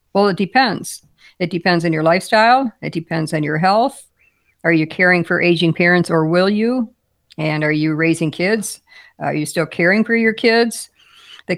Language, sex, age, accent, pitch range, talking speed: English, female, 50-69, American, 165-195 Hz, 180 wpm